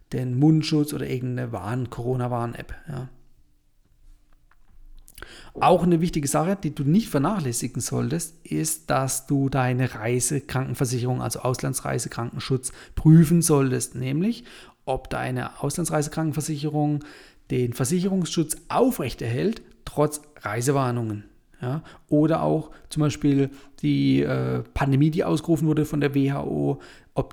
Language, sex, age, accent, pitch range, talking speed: German, male, 40-59, German, 125-150 Hz, 105 wpm